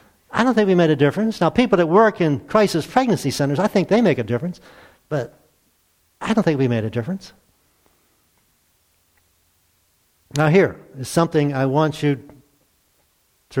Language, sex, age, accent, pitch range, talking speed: English, male, 50-69, American, 125-170 Hz, 165 wpm